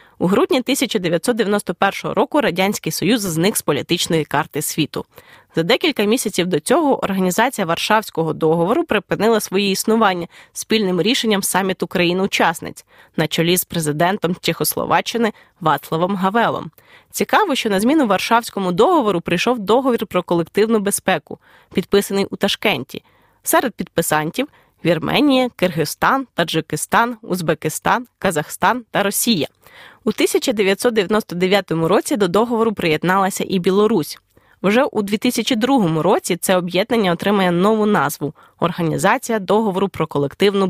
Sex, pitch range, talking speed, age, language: female, 175-225 Hz, 120 wpm, 20-39, Ukrainian